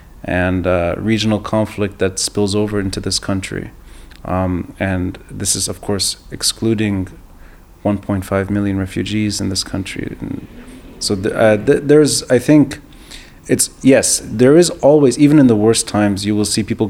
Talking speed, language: 155 wpm, English